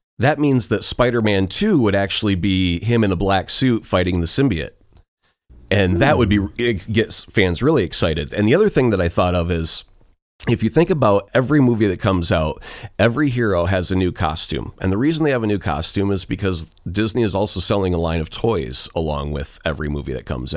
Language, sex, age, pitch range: English, male, 30-49, 90-115 Hz